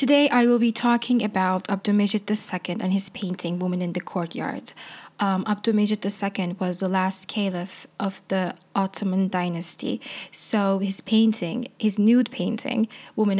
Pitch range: 185-215 Hz